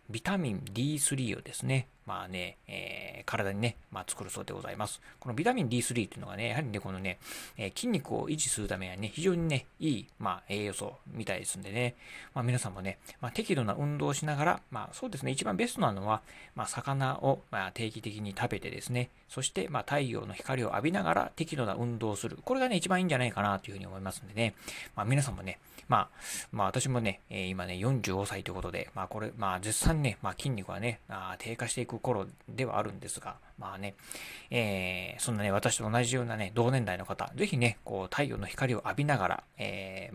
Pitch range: 100-130 Hz